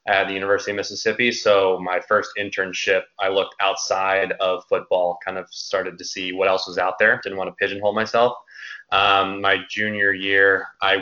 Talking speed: 185 wpm